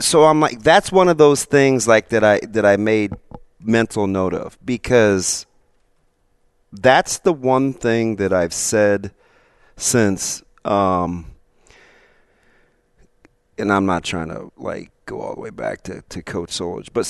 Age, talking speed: 40-59, 150 wpm